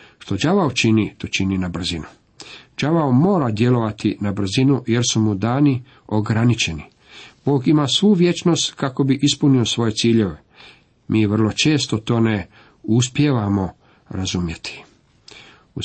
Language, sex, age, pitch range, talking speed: Croatian, male, 50-69, 105-130 Hz, 130 wpm